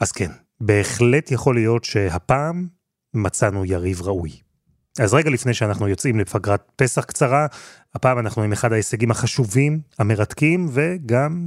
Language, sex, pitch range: Hebrew, male, 110-140 Hz